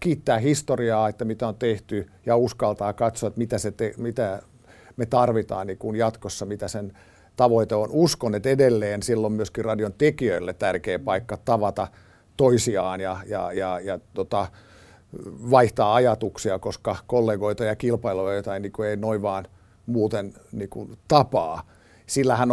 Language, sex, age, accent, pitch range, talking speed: Finnish, male, 50-69, native, 95-120 Hz, 145 wpm